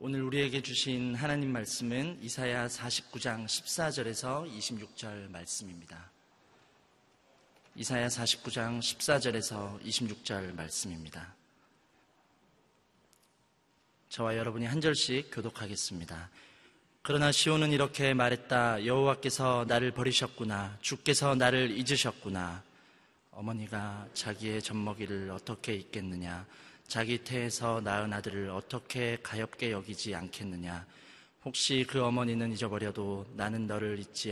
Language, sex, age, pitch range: Korean, male, 30-49, 105-130 Hz